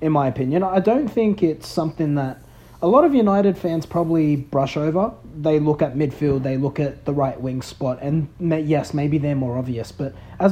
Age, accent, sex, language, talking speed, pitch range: 30-49, Australian, male, English, 205 wpm, 135-170 Hz